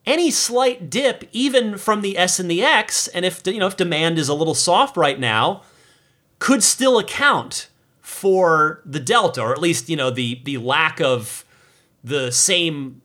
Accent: American